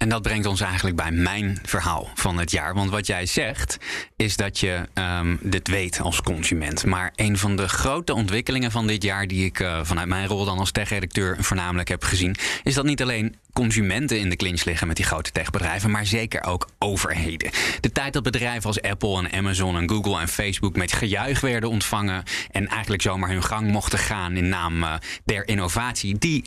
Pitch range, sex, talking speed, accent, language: 90-110 Hz, male, 205 wpm, Dutch, Dutch